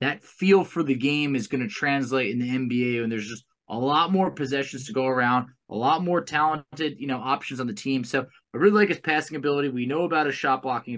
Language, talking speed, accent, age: English, 245 wpm, American, 20-39